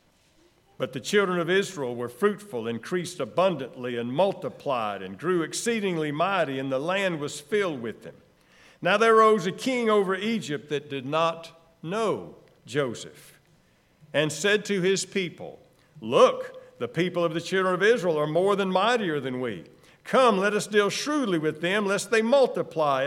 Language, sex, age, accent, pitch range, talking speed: English, male, 50-69, American, 160-210 Hz, 165 wpm